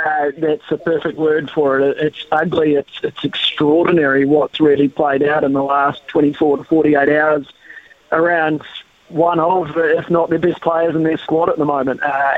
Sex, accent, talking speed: male, Australian, 185 wpm